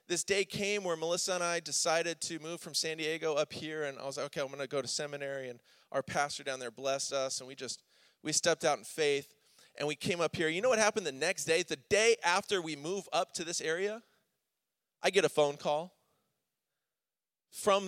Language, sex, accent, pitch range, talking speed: English, male, American, 155-230 Hz, 230 wpm